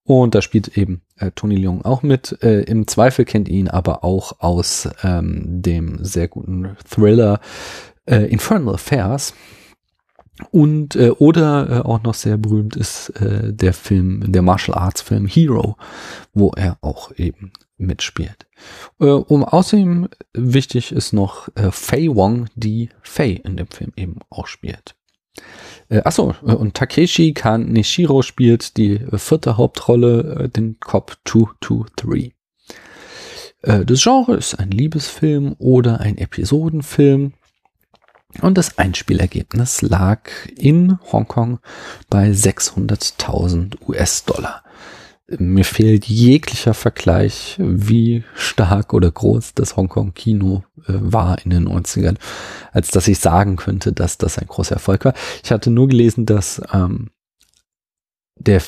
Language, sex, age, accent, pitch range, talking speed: German, male, 40-59, German, 95-125 Hz, 130 wpm